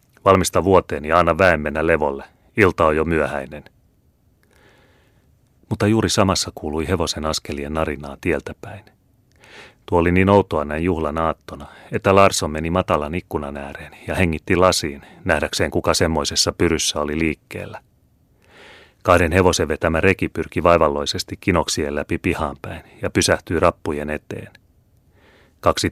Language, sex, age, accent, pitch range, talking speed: Finnish, male, 30-49, native, 75-95 Hz, 125 wpm